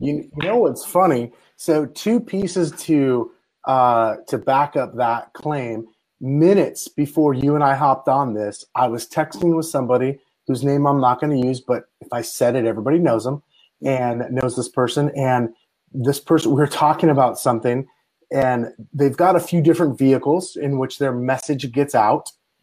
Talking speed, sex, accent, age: 180 wpm, male, American, 30-49